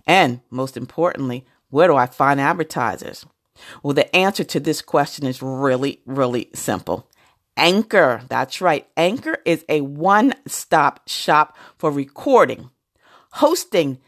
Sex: female